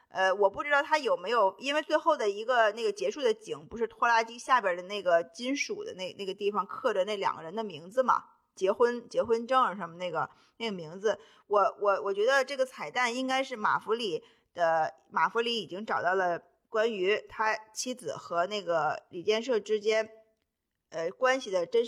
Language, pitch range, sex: Chinese, 200-290 Hz, female